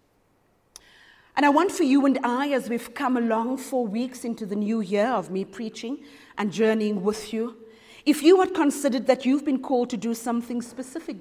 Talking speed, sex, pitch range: 195 wpm, female, 220-305 Hz